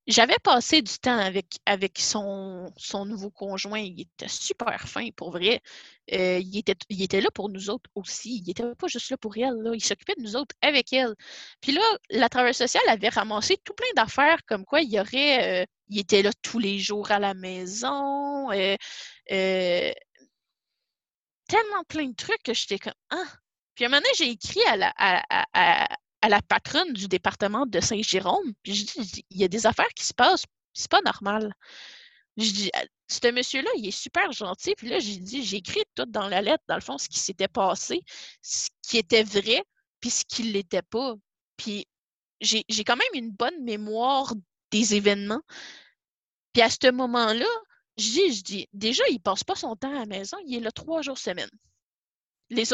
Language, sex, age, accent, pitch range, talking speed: French, female, 20-39, Canadian, 205-280 Hz, 205 wpm